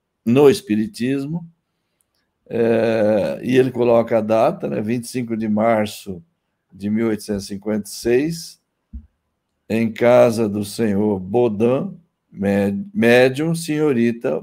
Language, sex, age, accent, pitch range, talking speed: Portuguese, male, 60-79, Brazilian, 105-150 Hz, 85 wpm